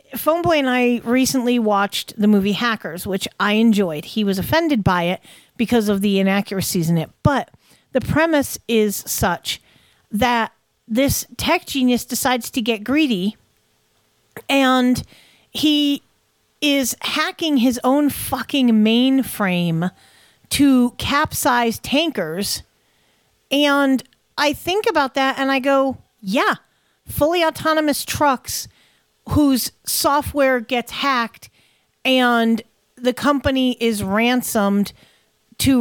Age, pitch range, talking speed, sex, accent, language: 40-59, 220-270 Hz, 115 wpm, female, American, English